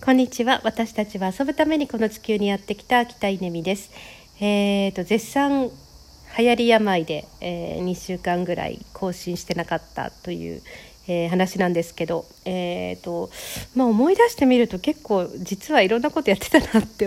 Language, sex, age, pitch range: Japanese, female, 50-69, 170-240 Hz